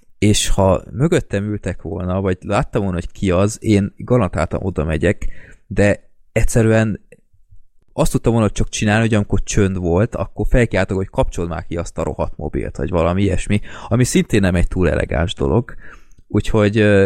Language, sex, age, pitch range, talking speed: Hungarian, male, 20-39, 90-110 Hz, 165 wpm